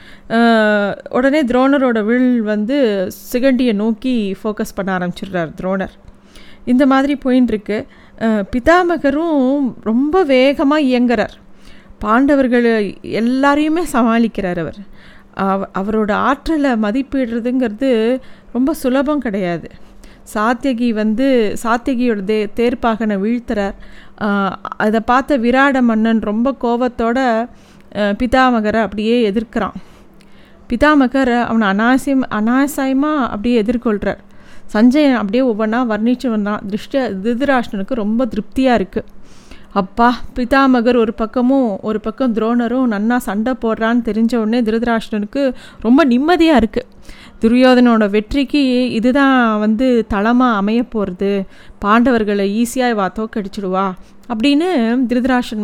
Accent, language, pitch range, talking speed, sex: native, Tamil, 215-260 Hz, 95 wpm, female